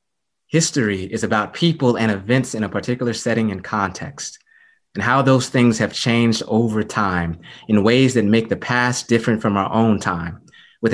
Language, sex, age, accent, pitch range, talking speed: English, male, 20-39, American, 100-120 Hz, 175 wpm